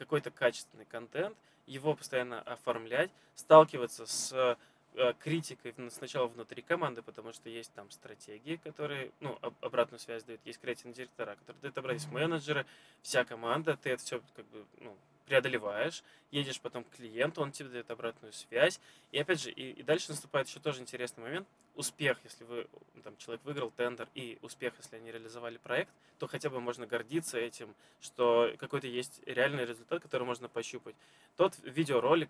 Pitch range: 120-145 Hz